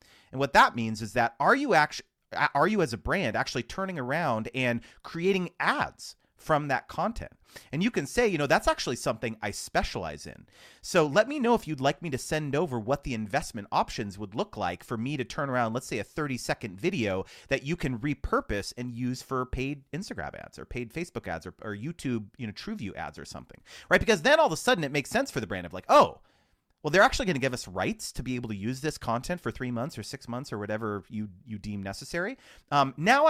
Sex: male